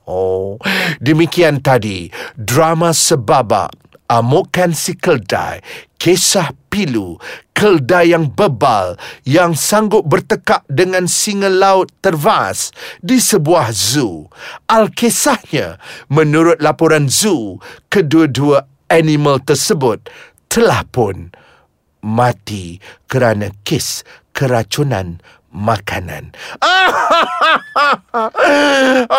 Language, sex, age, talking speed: Malay, male, 50-69, 85 wpm